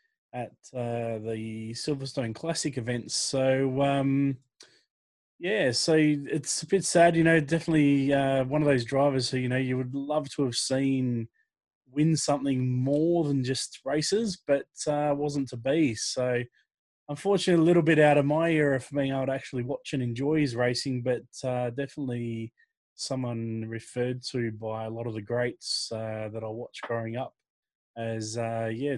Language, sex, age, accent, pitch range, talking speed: English, male, 20-39, Australian, 120-145 Hz, 170 wpm